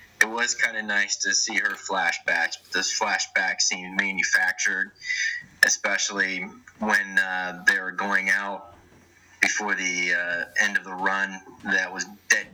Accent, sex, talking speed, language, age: American, male, 150 wpm, English, 30-49